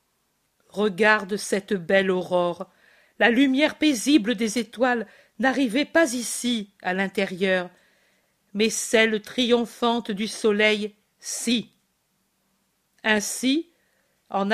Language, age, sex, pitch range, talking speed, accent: French, 50-69, female, 200-245 Hz, 90 wpm, French